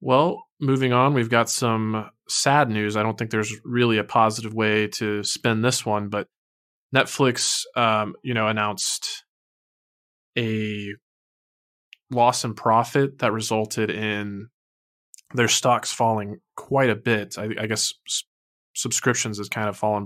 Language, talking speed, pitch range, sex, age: English, 140 wpm, 105-115 Hz, male, 20-39